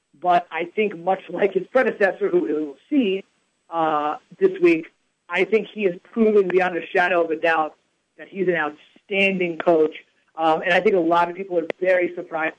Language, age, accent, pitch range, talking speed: English, 50-69, American, 170-220 Hz, 195 wpm